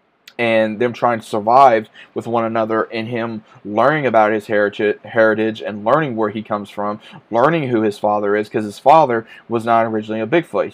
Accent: American